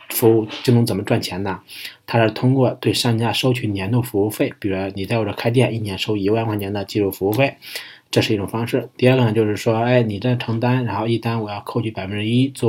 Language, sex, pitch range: Chinese, male, 105-125 Hz